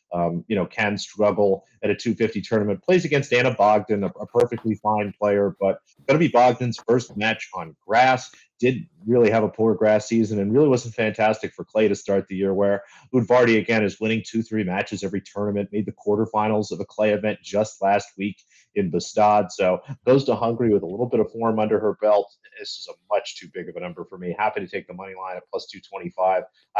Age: 30-49